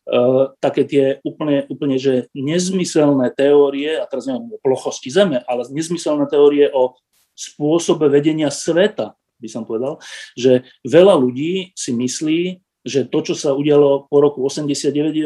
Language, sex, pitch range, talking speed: Slovak, male, 135-170 Hz, 140 wpm